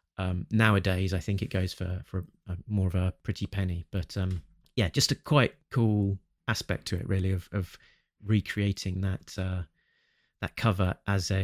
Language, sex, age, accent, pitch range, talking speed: English, male, 30-49, British, 90-105 Hz, 180 wpm